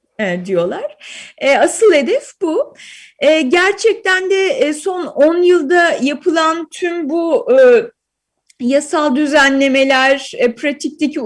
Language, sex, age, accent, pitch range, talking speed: Turkish, female, 30-49, native, 270-365 Hz, 80 wpm